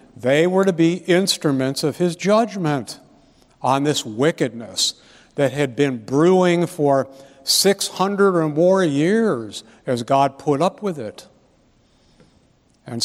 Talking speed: 125 wpm